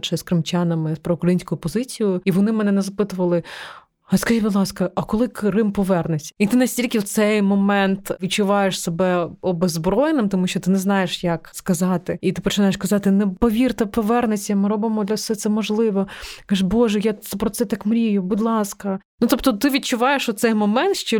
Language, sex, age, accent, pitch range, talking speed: Ukrainian, female, 20-39, native, 185-225 Hz, 185 wpm